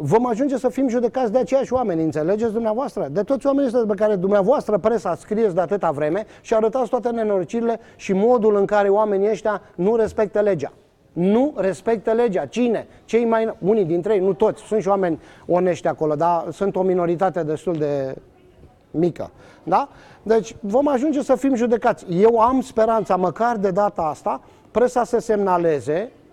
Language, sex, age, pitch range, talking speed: Romanian, male, 30-49, 190-240 Hz, 170 wpm